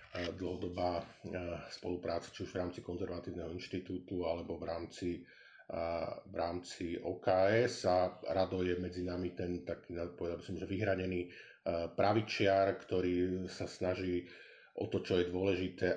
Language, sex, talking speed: Slovak, male, 130 wpm